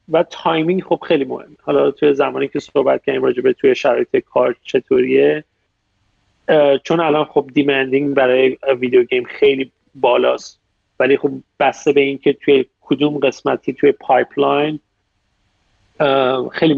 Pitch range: 125-155 Hz